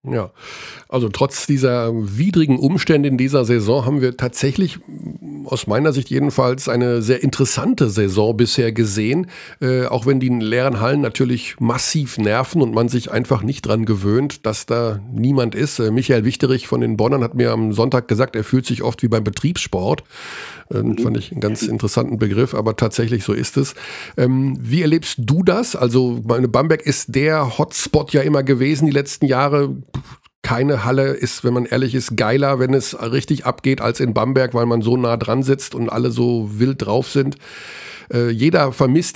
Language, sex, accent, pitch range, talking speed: German, male, German, 120-145 Hz, 180 wpm